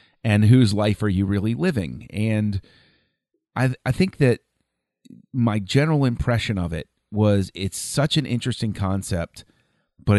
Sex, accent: male, American